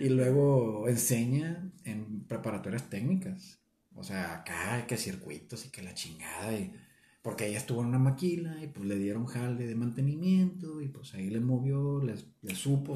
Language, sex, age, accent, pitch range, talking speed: Spanish, male, 40-59, Mexican, 110-140 Hz, 170 wpm